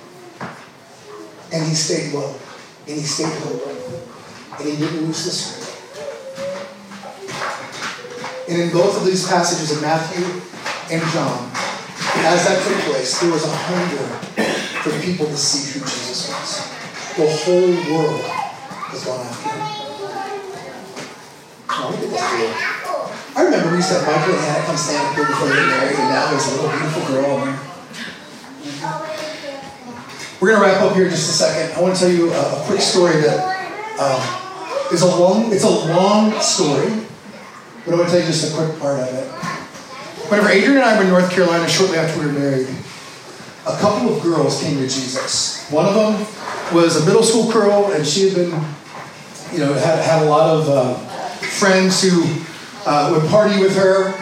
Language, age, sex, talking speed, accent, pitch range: English, 40-59, male, 170 wpm, American, 155-195 Hz